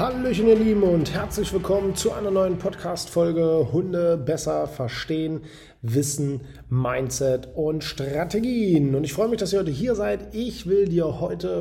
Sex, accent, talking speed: male, German, 155 wpm